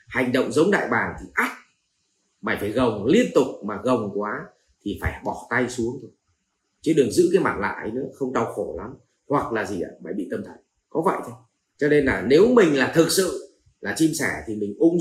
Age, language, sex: 30-49, Vietnamese, male